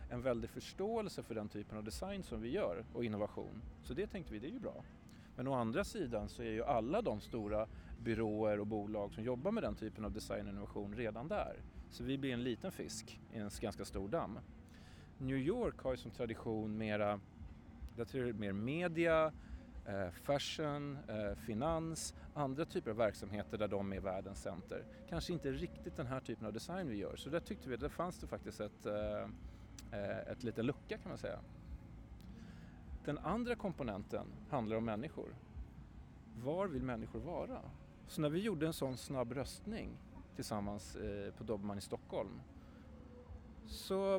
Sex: male